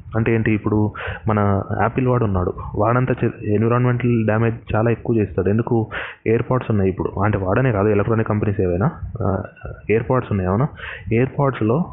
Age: 20-39